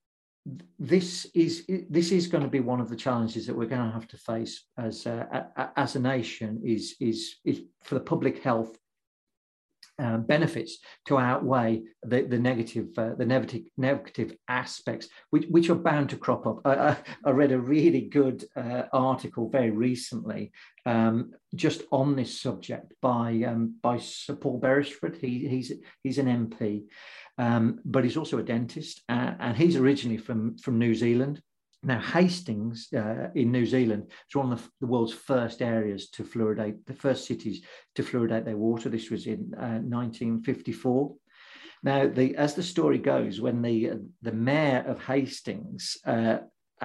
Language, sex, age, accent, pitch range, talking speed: English, male, 50-69, British, 115-140 Hz, 165 wpm